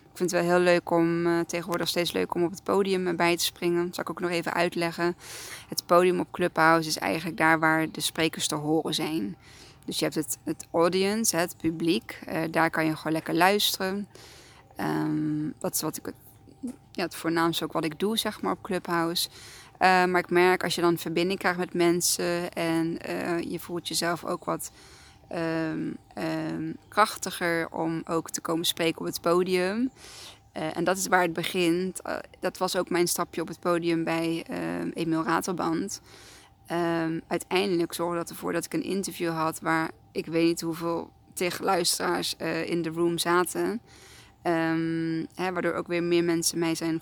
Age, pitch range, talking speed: 20-39, 165-175 Hz, 175 wpm